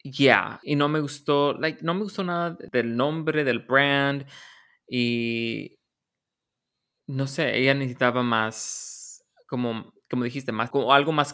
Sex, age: male, 20-39